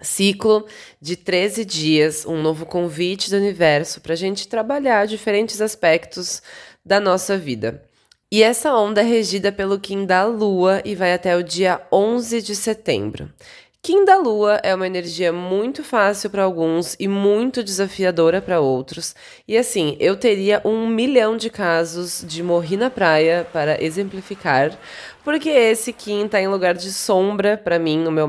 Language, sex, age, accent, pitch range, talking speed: Portuguese, female, 20-39, Brazilian, 170-210 Hz, 160 wpm